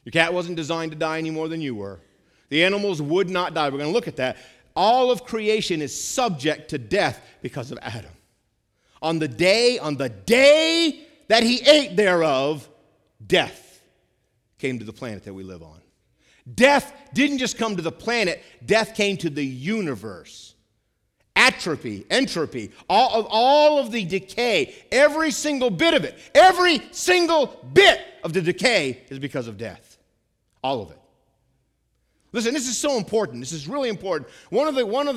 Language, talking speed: English, 175 wpm